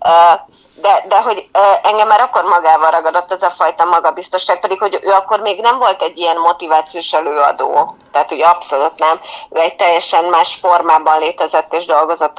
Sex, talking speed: female, 170 wpm